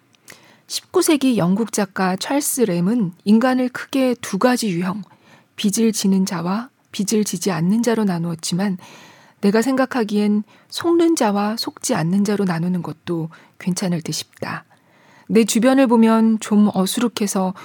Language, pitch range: Korean, 190-235 Hz